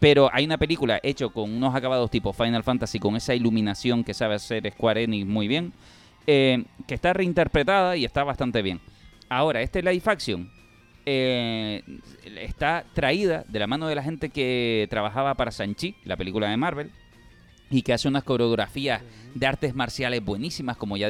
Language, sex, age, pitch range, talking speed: Spanish, male, 30-49, 110-155 Hz, 175 wpm